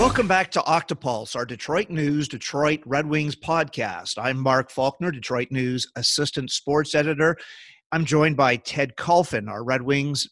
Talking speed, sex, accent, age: 155 wpm, male, American, 40-59